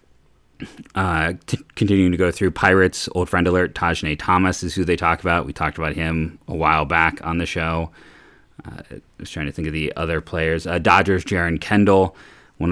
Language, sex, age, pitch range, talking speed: English, male, 30-49, 80-95 Hz, 190 wpm